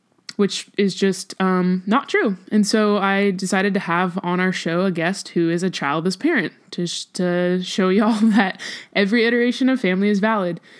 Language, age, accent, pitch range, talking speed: English, 20-39, American, 175-215 Hz, 190 wpm